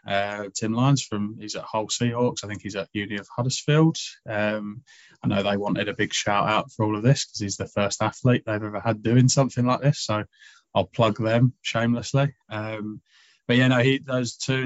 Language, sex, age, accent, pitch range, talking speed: English, male, 20-39, British, 100-120 Hz, 215 wpm